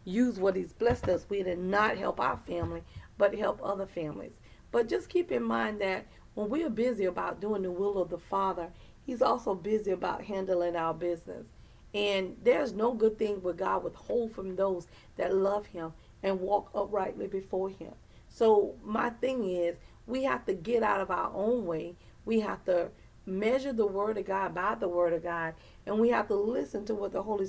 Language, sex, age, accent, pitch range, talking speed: English, female, 40-59, American, 180-225 Hz, 200 wpm